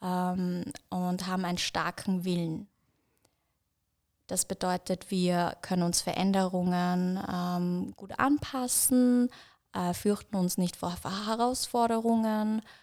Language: German